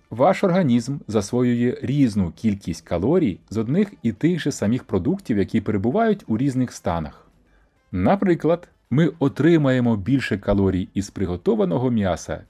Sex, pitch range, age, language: male, 100-145 Hz, 30-49, Ukrainian